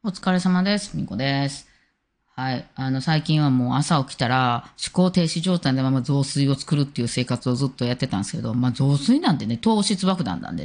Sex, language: female, Japanese